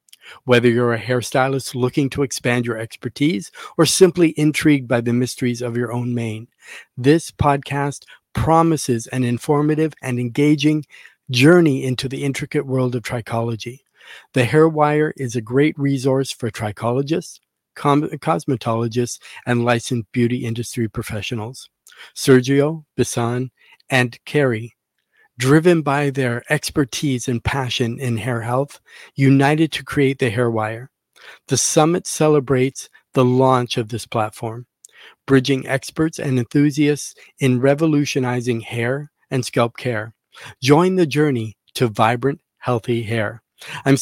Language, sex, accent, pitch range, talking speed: English, male, American, 120-145 Hz, 125 wpm